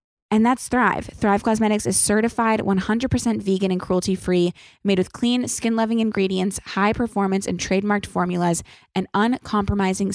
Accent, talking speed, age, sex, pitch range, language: American, 130 wpm, 20-39, female, 185-230 Hz, English